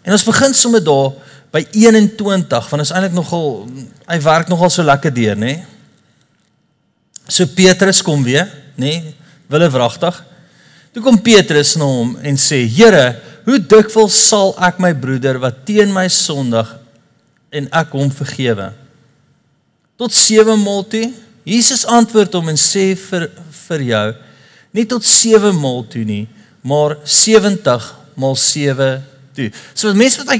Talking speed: 145 wpm